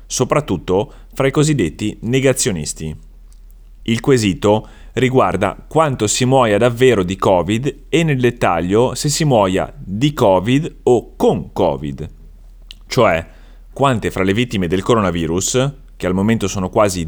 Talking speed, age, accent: 130 wpm, 30-49, native